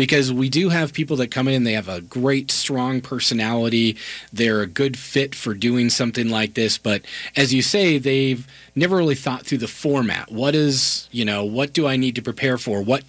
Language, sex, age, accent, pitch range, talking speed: English, male, 30-49, American, 110-145 Hz, 210 wpm